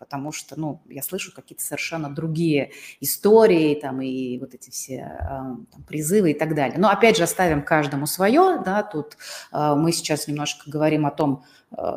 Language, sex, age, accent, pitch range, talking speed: Russian, female, 30-49, native, 145-185 Hz, 165 wpm